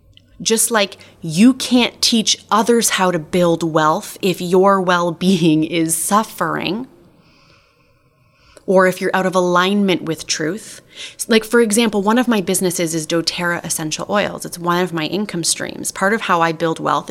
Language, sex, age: English, female, 30-49